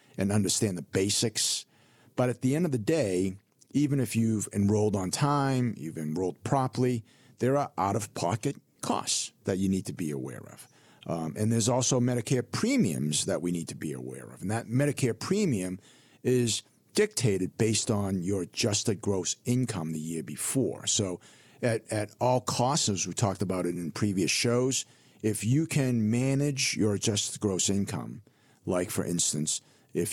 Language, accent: English, American